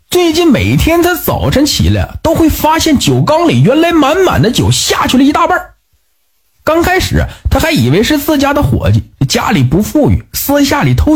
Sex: male